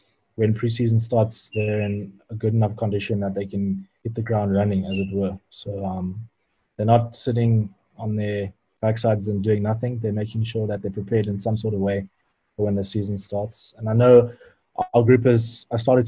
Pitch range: 100-115 Hz